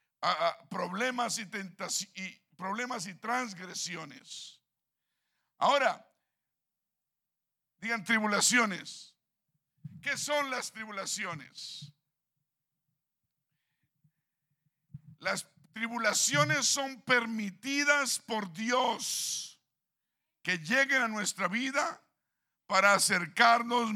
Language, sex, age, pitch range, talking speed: Spanish, male, 50-69, 190-250 Hz, 65 wpm